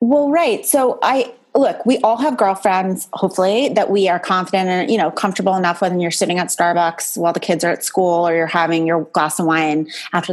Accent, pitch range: American, 175-270 Hz